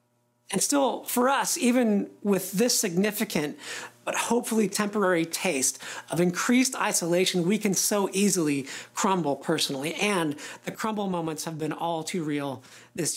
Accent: American